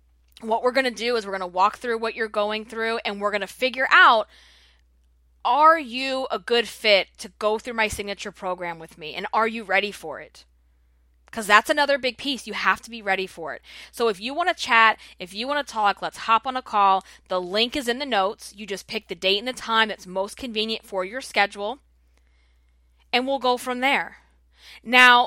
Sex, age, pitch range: female, 20-39, 175-250 Hz